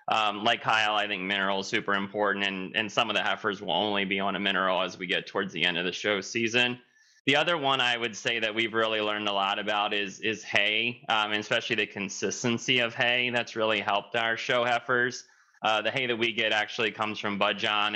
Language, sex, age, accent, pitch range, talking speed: English, male, 20-39, American, 100-115 Hz, 235 wpm